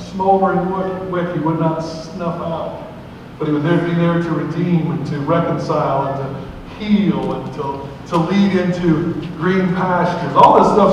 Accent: American